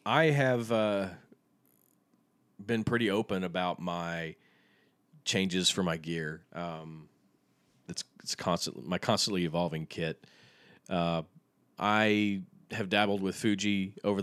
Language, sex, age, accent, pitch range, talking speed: English, male, 30-49, American, 85-105 Hz, 115 wpm